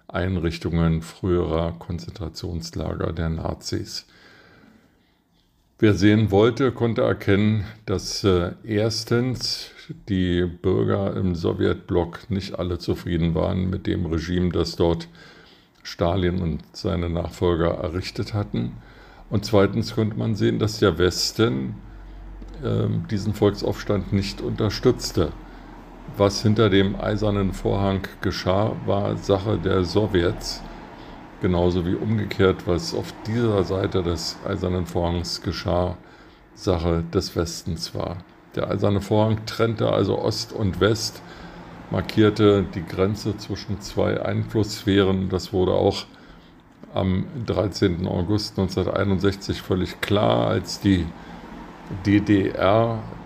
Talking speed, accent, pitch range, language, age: 110 wpm, German, 90-105 Hz, German, 50-69